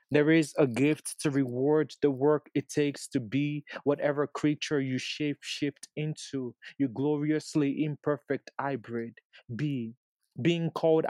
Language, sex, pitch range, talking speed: English, male, 135-150 Hz, 130 wpm